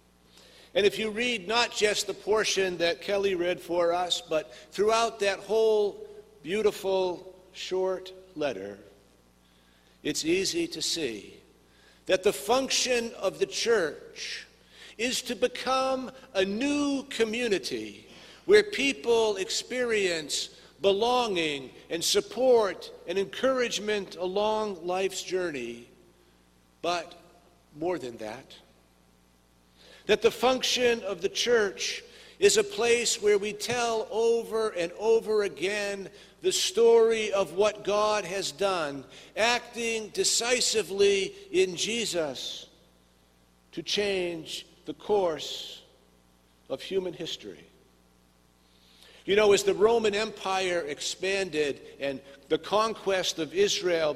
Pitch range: 165-240 Hz